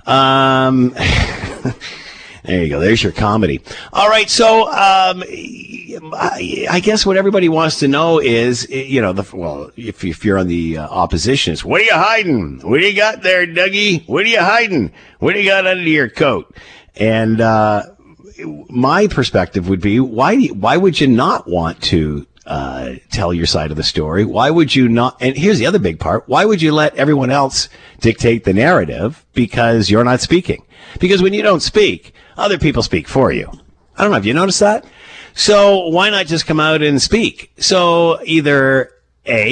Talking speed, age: 190 wpm, 50-69